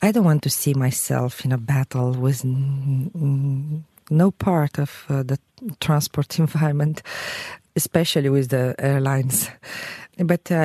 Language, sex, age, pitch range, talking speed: English, female, 40-59, 140-170 Hz, 130 wpm